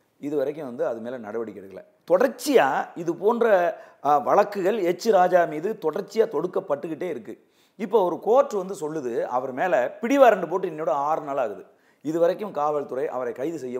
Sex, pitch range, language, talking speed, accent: male, 175-280 Hz, Tamil, 155 wpm, native